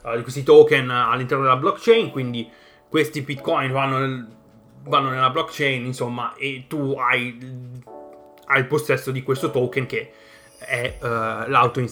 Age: 20-39